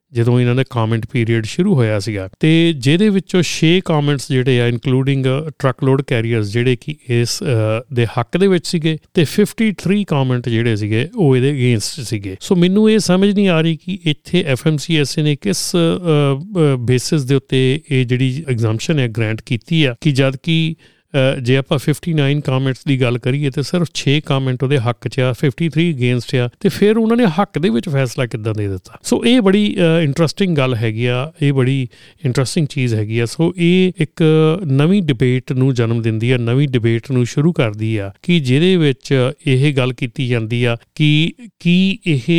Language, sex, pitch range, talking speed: Punjabi, male, 125-165 Hz, 185 wpm